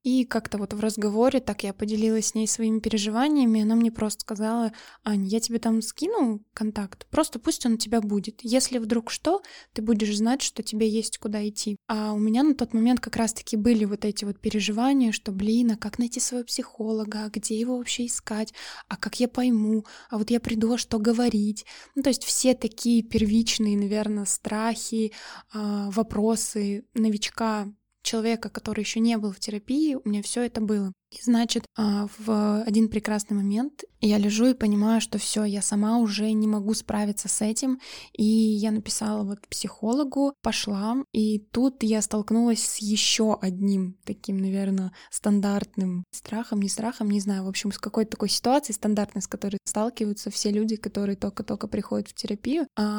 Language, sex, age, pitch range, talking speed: Russian, female, 20-39, 210-230 Hz, 175 wpm